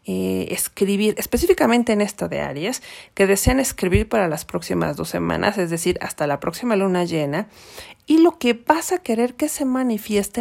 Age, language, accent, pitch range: 40-59, Spanish, Mexican, 180-220 Hz